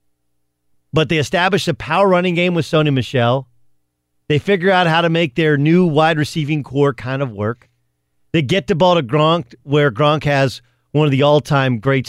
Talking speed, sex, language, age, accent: 190 wpm, male, English, 40-59, American